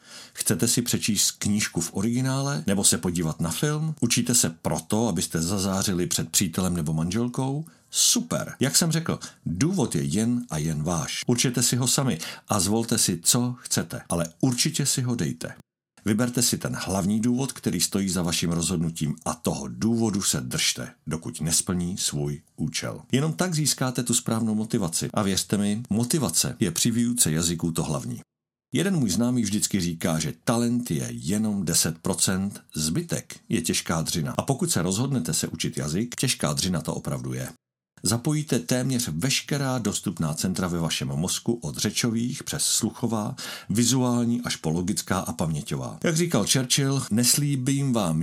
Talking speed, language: 160 wpm, Czech